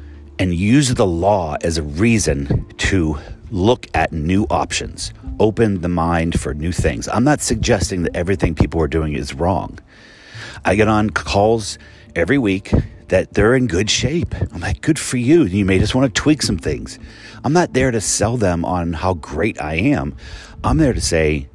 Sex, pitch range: male, 80-110 Hz